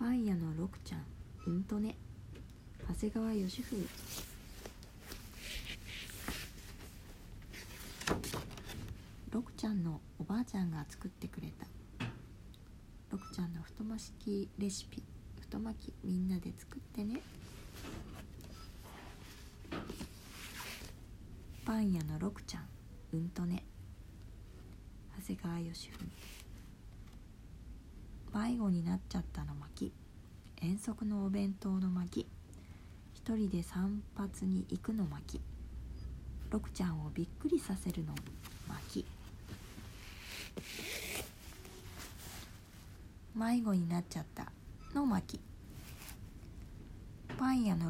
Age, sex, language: 40-59, female, Japanese